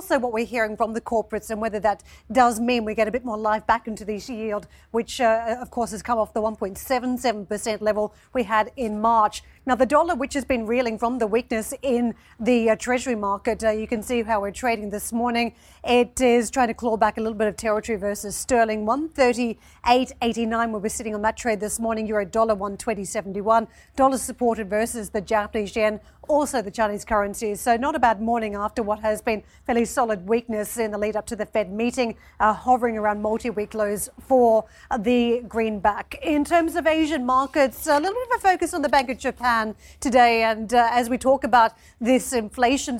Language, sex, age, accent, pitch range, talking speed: English, female, 40-59, Australian, 220-250 Hz, 210 wpm